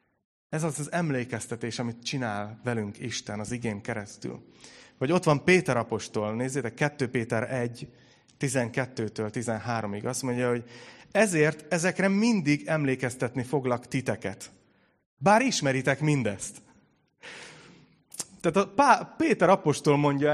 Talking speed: 110 wpm